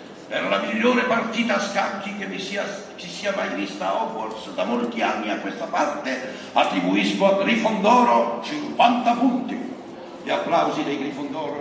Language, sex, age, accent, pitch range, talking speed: Italian, male, 60-79, native, 205-295 Hz, 155 wpm